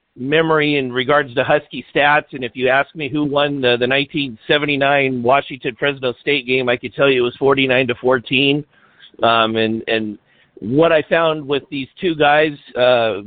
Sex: male